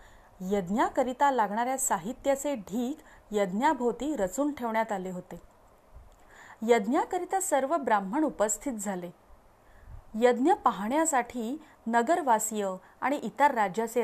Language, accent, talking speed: Marathi, native, 85 wpm